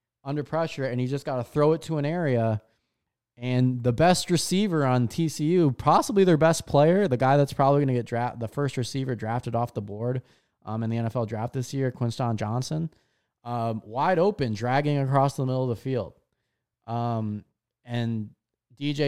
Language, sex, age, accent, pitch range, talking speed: English, male, 20-39, American, 120-160 Hz, 185 wpm